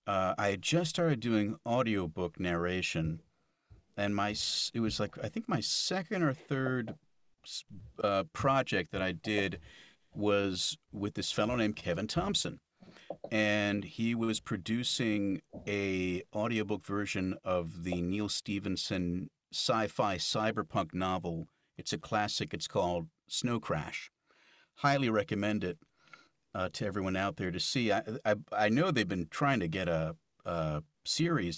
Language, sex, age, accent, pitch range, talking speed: English, male, 50-69, American, 90-130 Hz, 140 wpm